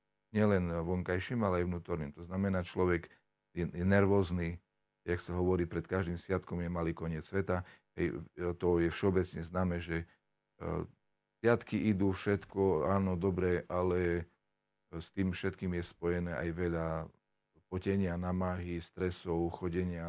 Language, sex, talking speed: Slovak, male, 125 wpm